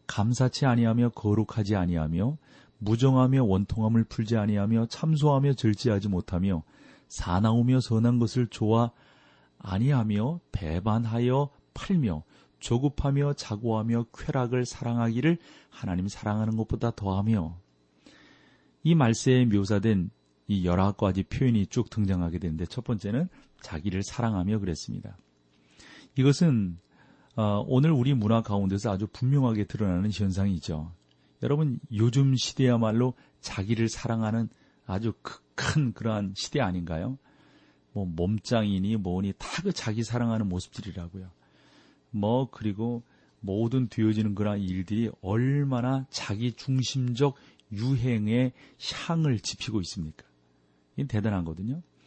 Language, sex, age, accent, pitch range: Korean, male, 40-59, native, 95-125 Hz